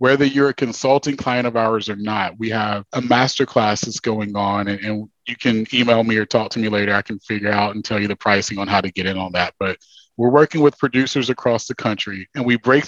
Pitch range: 105-130 Hz